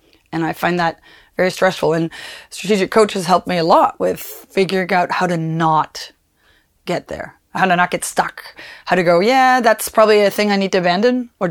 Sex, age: female, 30-49